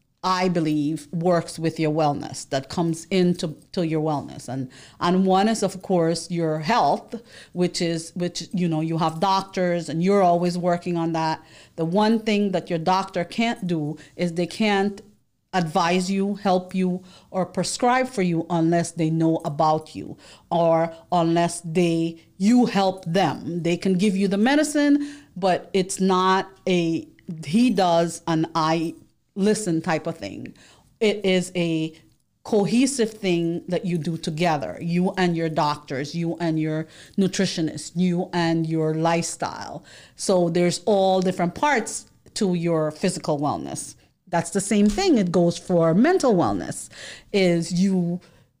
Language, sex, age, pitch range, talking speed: English, female, 40-59, 165-190 Hz, 150 wpm